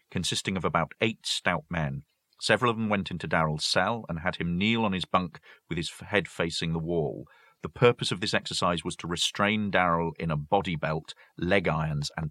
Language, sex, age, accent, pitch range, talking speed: English, male, 40-59, British, 80-95 Hz, 205 wpm